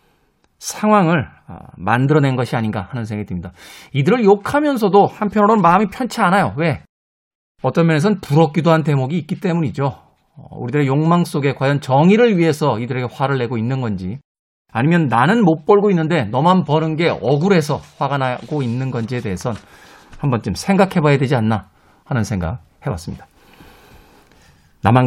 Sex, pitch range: male, 125-195 Hz